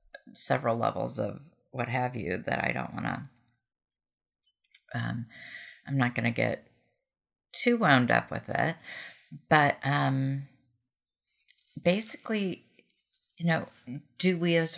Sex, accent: female, American